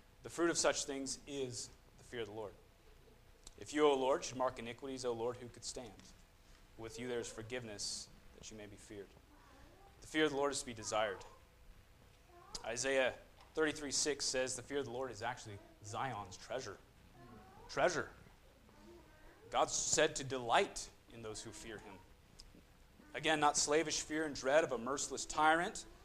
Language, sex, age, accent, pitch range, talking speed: English, male, 30-49, American, 110-140 Hz, 170 wpm